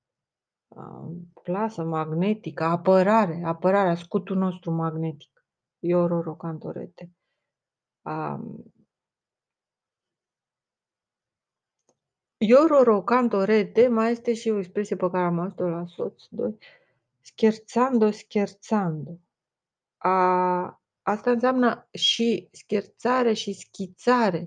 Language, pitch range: Romanian, 175-215 Hz